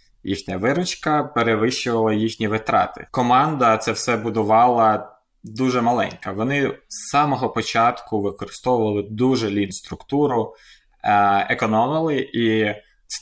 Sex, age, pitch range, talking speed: male, 20-39, 105-130 Hz, 100 wpm